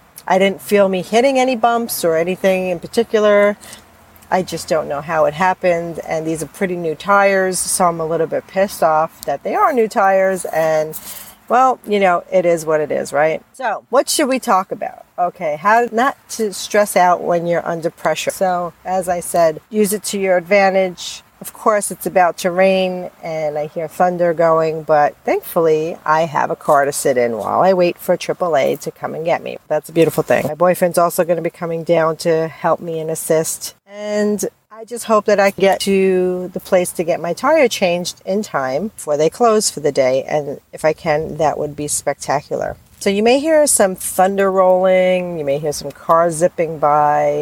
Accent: American